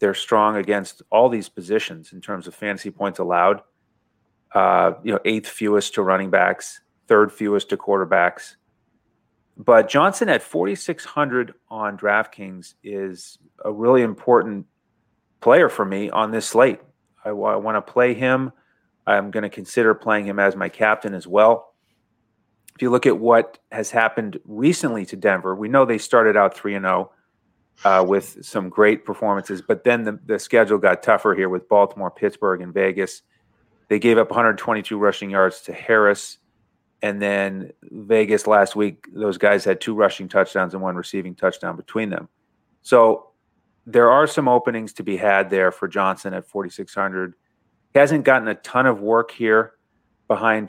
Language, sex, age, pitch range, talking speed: English, male, 30-49, 95-115 Hz, 170 wpm